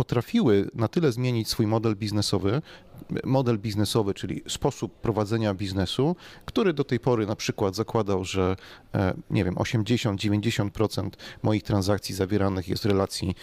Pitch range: 105-130 Hz